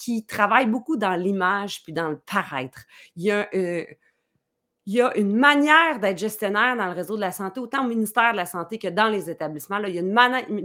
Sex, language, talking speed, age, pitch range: female, French, 235 wpm, 30-49, 165-210 Hz